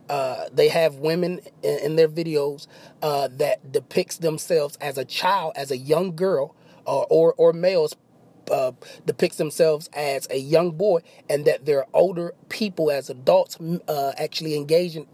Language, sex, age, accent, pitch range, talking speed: English, male, 30-49, American, 155-185 Hz, 165 wpm